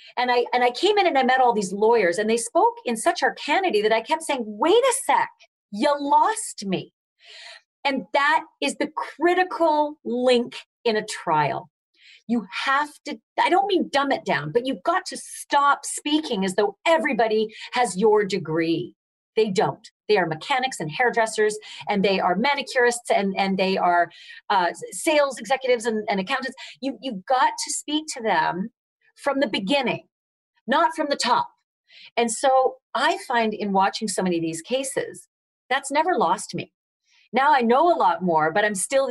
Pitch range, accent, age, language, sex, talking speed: 195-290 Hz, American, 40-59, English, female, 180 wpm